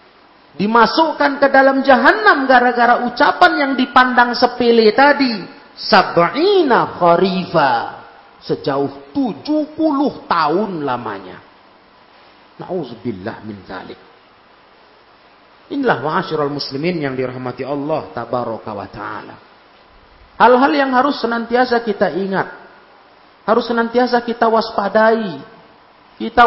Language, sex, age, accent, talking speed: Indonesian, male, 40-59, native, 90 wpm